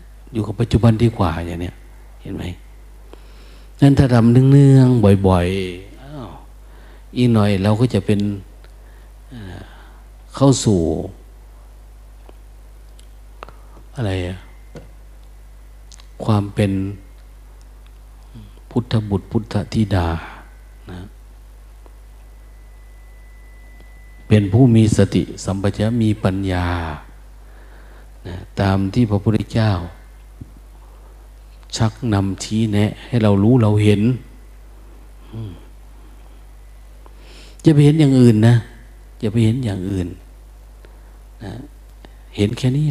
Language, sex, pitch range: Thai, male, 90-120 Hz